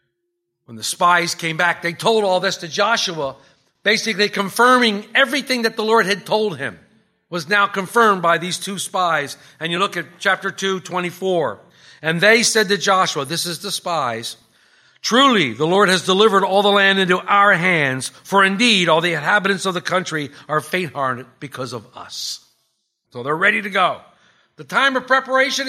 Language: English